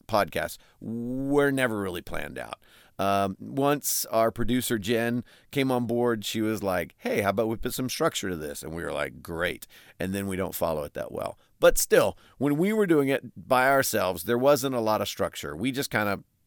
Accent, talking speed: American, 210 wpm